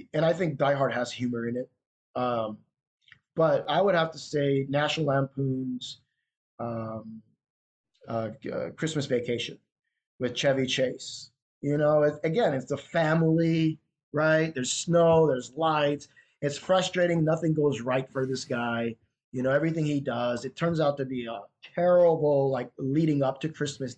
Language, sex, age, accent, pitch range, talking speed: English, male, 30-49, American, 130-165 Hz, 155 wpm